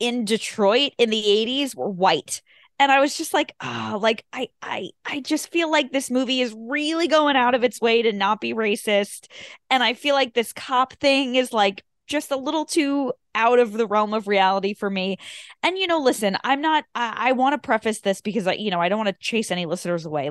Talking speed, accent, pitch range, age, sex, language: 230 wpm, American, 180-240 Hz, 20-39, female, English